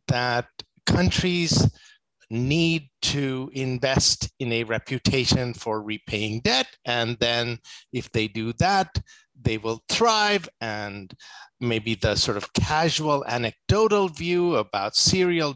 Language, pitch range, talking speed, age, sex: English, 115-165 Hz, 115 wpm, 50-69, male